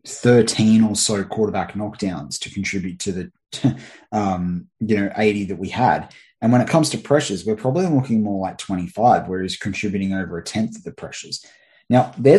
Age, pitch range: 20-39, 95-115 Hz